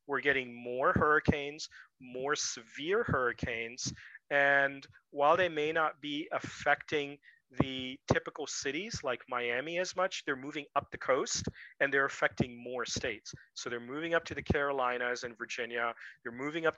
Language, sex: English, male